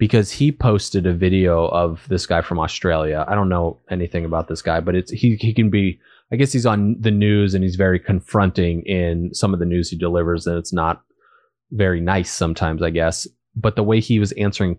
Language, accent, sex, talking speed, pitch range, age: English, American, male, 220 wpm, 90-120 Hz, 20-39